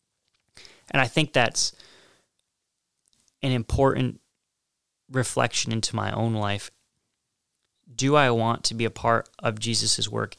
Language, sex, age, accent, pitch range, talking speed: English, male, 20-39, American, 110-125 Hz, 120 wpm